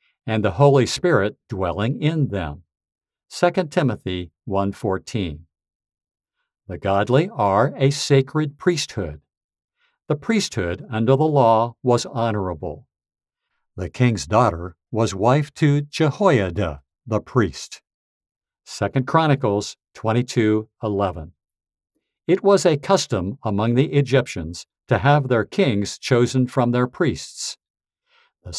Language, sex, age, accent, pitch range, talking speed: English, male, 60-79, American, 95-140 Hz, 110 wpm